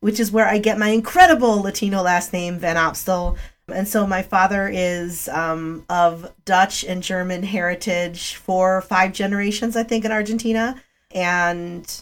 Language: English